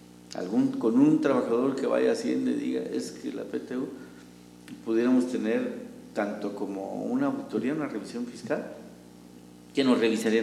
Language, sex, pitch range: English, male, 95-135 Hz